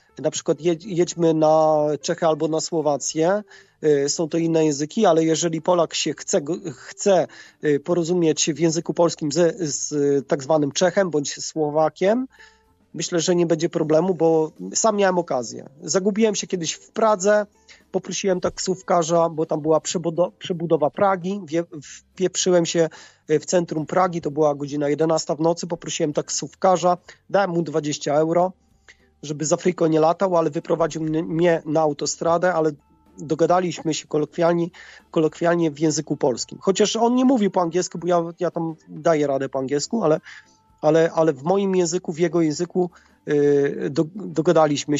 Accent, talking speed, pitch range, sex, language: native, 145 wpm, 150-180 Hz, male, Polish